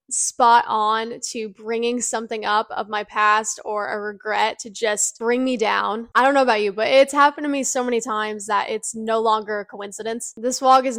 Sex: female